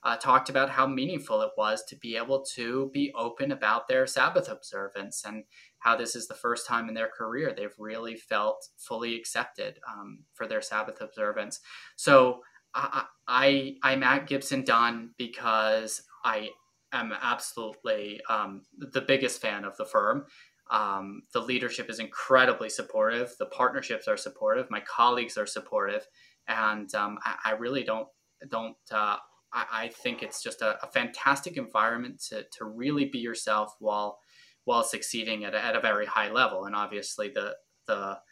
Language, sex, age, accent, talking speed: English, male, 20-39, American, 160 wpm